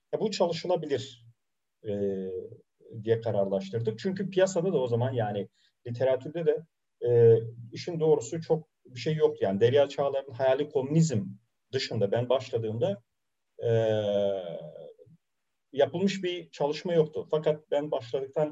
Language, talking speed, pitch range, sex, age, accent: Turkish, 120 wpm, 115-180 Hz, male, 40-59, native